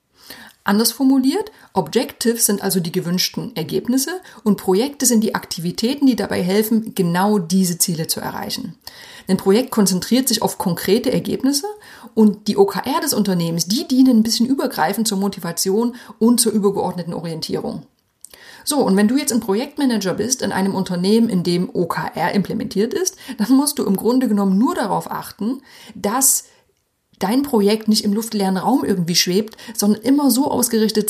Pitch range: 190-245 Hz